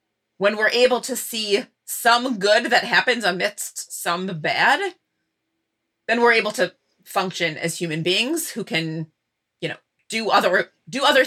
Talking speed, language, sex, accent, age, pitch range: 150 wpm, English, female, American, 30-49, 165-215 Hz